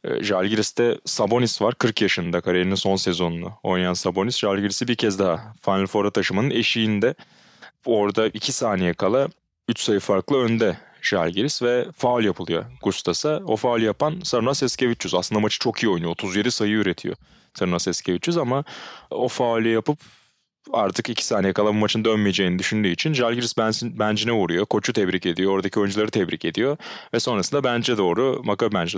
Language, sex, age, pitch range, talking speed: Turkish, male, 30-49, 95-120 Hz, 155 wpm